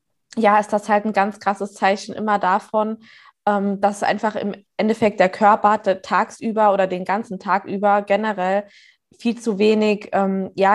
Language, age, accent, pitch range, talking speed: German, 20-39, German, 195-215 Hz, 150 wpm